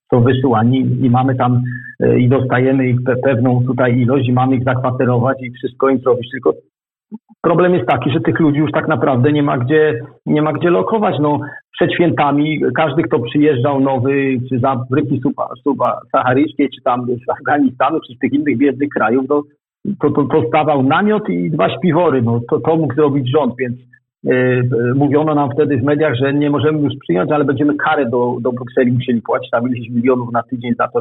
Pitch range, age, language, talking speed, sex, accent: 125-150 Hz, 50-69, Polish, 190 wpm, male, native